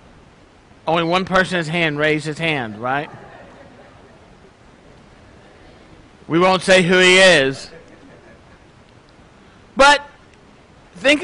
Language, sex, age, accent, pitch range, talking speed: English, male, 50-69, American, 185-240 Hz, 85 wpm